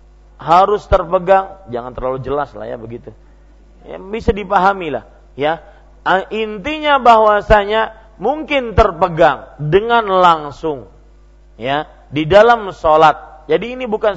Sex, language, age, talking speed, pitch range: male, Malay, 40-59, 105 wpm, 145-210 Hz